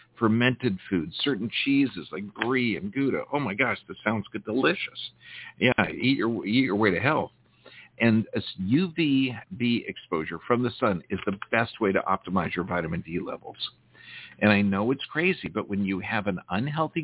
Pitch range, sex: 100-125 Hz, male